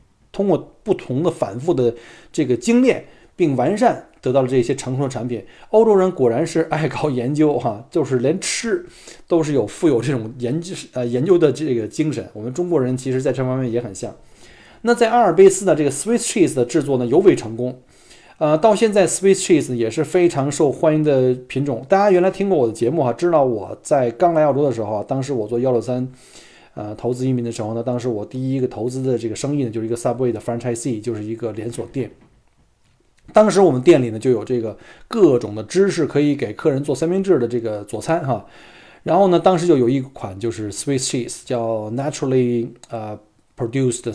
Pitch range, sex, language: 120-155 Hz, male, Chinese